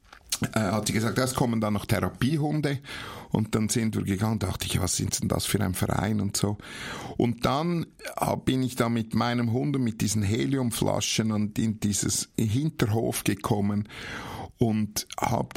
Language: German